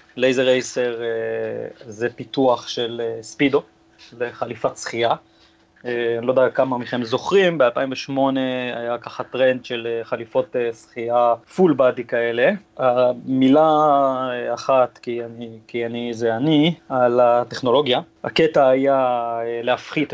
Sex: male